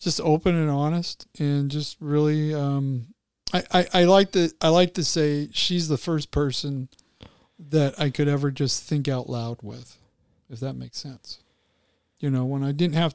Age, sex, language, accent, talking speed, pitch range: 50-69, male, English, American, 185 wpm, 130-155 Hz